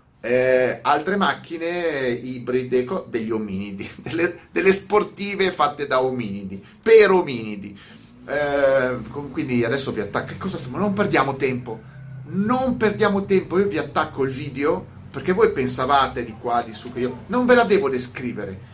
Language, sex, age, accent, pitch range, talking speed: Italian, male, 30-49, native, 125-185 Hz, 145 wpm